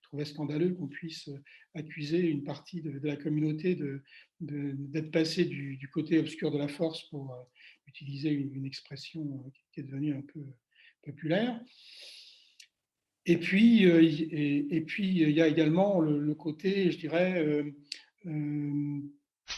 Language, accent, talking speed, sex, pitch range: French, French, 150 wpm, male, 150-180 Hz